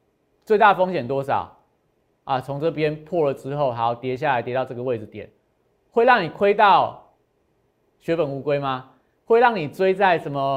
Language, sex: Chinese, male